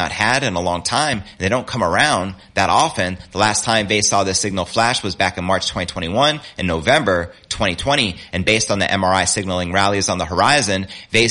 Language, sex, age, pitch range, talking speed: English, male, 30-49, 95-115 Hz, 200 wpm